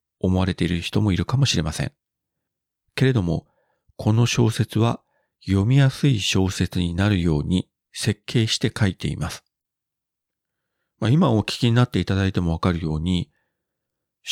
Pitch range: 85-115 Hz